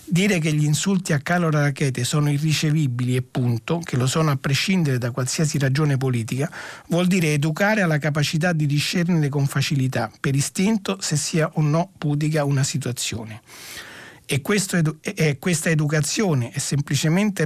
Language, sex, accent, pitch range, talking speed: Italian, male, native, 135-170 Hz, 150 wpm